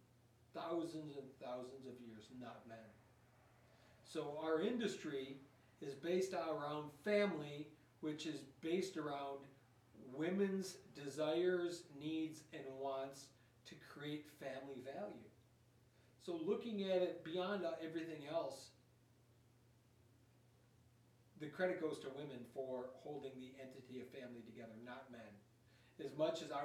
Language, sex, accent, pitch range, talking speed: English, male, American, 120-155 Hz, 115 wpm